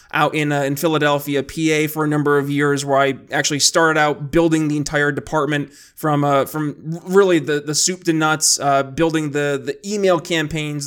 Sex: male